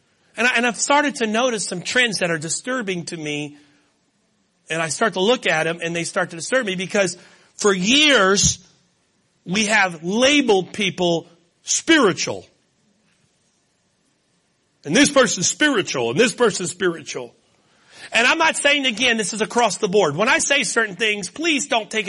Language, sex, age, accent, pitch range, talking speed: English, male, 40-59, American, 175-245 Hz, 165 wpm